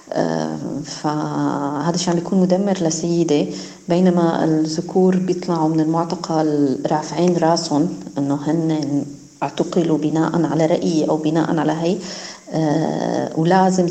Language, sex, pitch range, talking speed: Arabic, female, 155-180 Hz, 110 wpm